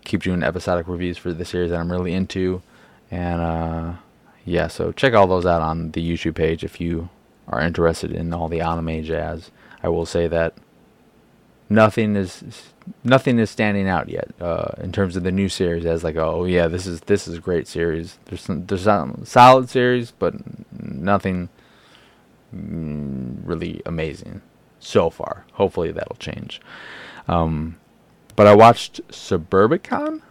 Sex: male